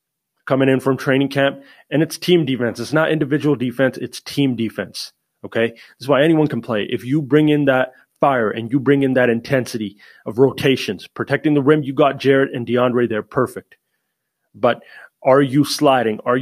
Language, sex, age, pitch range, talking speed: English, male, 30-49, 125-140 Hz, 190 wpm